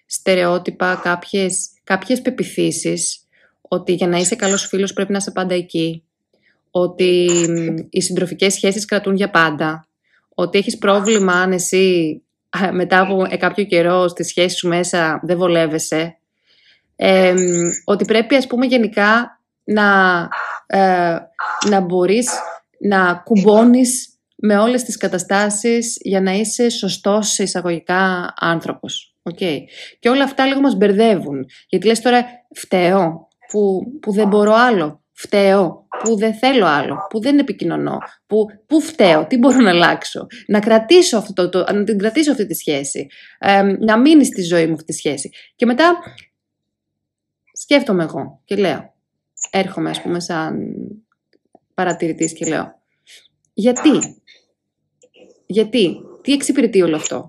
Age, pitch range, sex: 20-39, 175-220 Hz, female